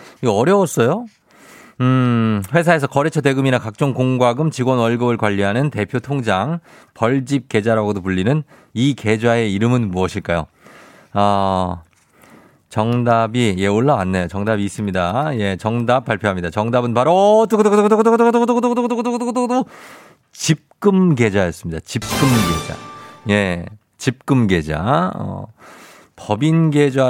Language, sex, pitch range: Korean, male, 100-150 Hz